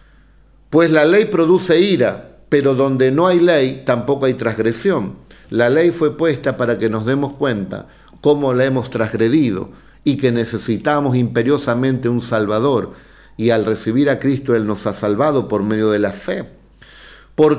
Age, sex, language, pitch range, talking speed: 50-69, male, Spanish, 125-165 Hz, 160 wpm